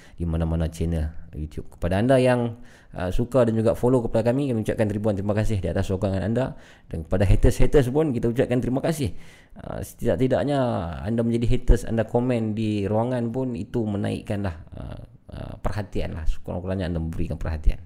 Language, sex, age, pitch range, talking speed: Malay, male, 20-39, 90-120 Hz, 170 wpm